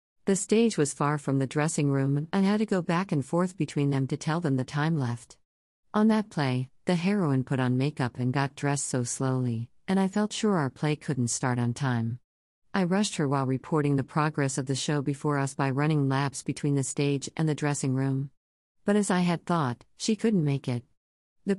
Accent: American